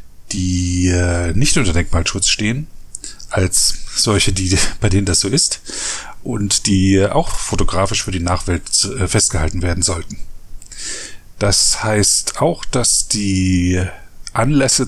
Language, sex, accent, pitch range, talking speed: German, male, German, 95-115 Hz, 115 wpm